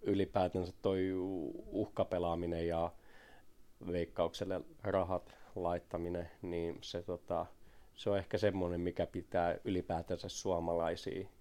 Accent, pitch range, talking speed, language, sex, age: native, 85-100 Hz, 95 wpm, Finnish, male, 30-49